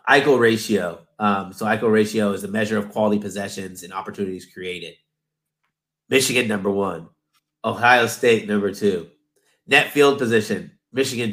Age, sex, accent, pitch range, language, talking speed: 30-49, male, American, 105-145 Hz, English, 140 wpm